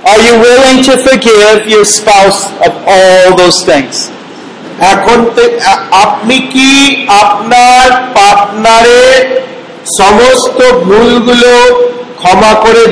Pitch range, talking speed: 195-245 Hz, 65 wpm